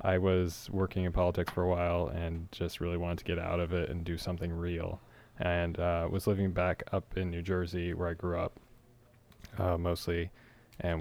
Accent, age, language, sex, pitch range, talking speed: American, 20-39, English, male, 85-100 Hz, 205 wpm